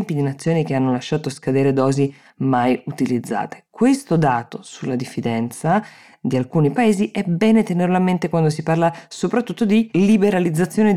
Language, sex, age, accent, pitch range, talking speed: Italian, female, 20-39, native, 125-170 Hz, 150 wpm